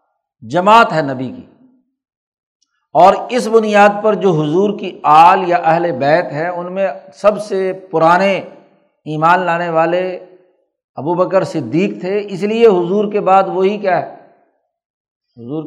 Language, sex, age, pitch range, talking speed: Urdu, male, 60-79, 160-210 Hz, 145 wpm